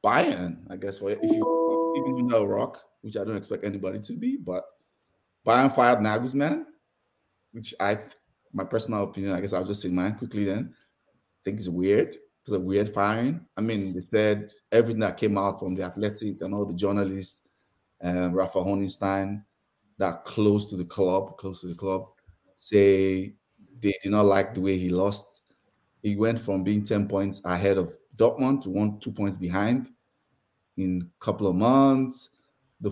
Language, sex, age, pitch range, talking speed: English, male, 20-39, 95-115 Hz, 185 wpm